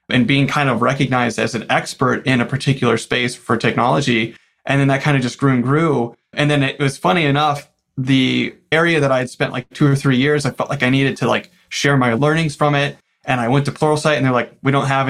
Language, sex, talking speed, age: English, male, 250 wpm, 30-49